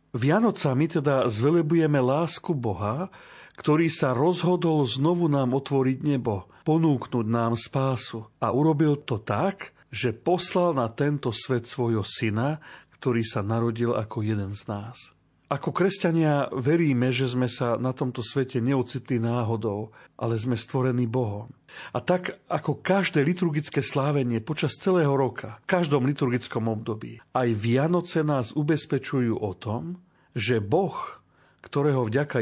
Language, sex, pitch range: Slovak, male, 115-150 Hz